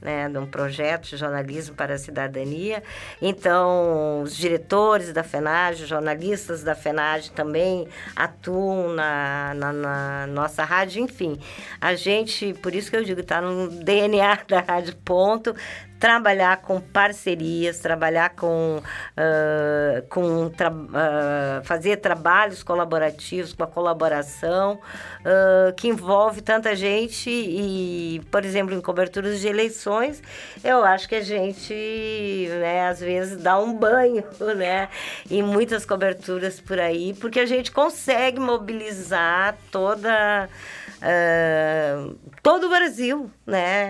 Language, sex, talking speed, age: Portuguese, female, 125 wpm, 50-69